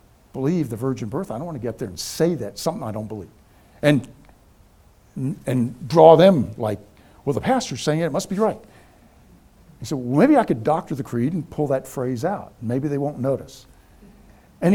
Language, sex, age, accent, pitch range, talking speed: English, male, 60-79, American, 110-150 Hz, 205 wpm